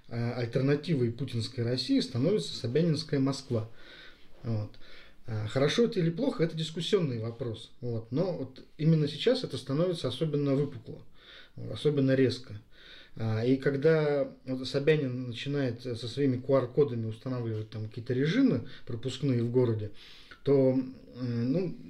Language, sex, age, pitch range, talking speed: Russian, male, 20-39, 120-150 Hz, 100 wpm